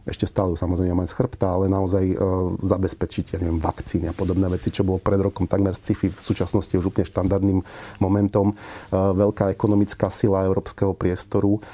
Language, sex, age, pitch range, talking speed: Slovak, male, 40-59, 95-105 Hz, 170 wpm